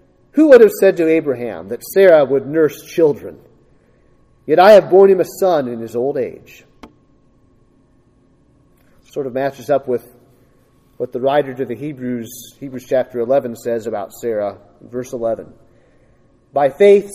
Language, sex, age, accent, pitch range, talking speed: English, male, 40-59, American, 130-185 Hz, 150 wpm